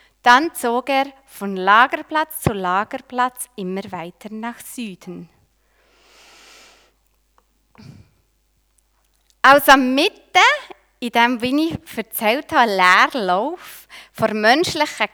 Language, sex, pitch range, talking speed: German, female, 200-275 Hz, 90 wpm